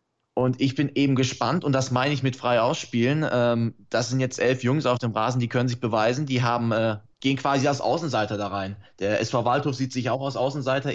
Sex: male